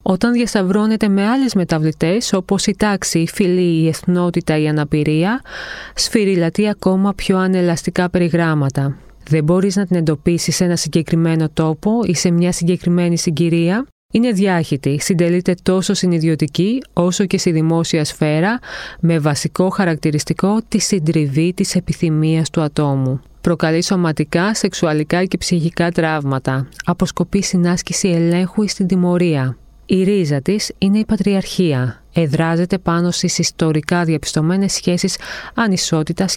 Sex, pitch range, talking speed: female, 155-190 Hz, 130 wpm